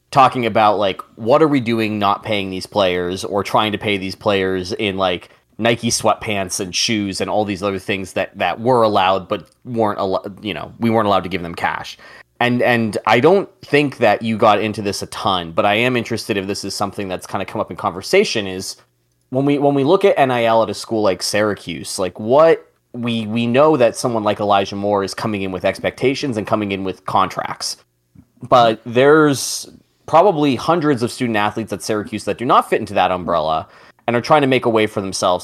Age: 20-39